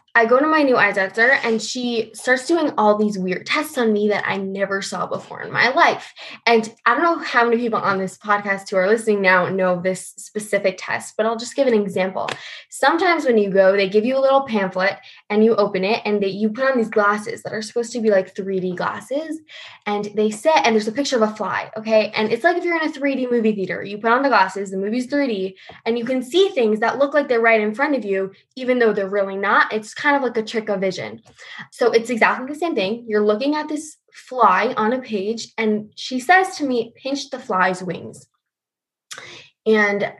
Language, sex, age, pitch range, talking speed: English, female, 10-29, 205-260 Hz, 235 wpm